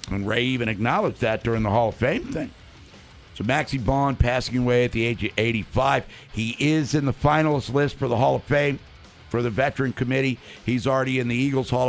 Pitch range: 105-135 Hz